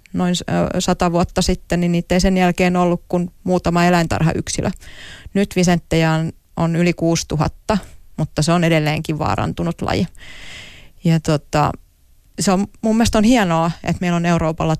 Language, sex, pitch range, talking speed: Finnish, female, 160-180 Hz, 145 wpm